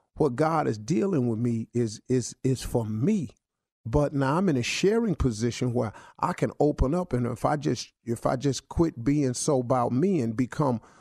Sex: male